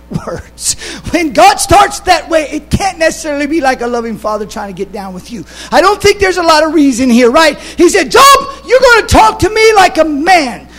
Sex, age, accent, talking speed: male, 50-69, American, 235 wpm